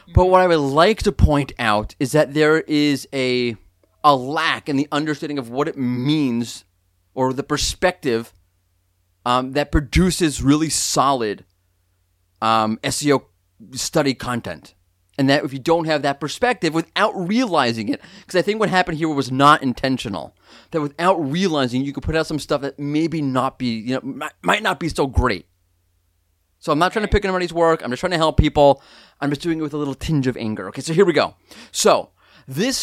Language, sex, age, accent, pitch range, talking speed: English, male, 30-49, American, 125-170 Hz, 190 wpm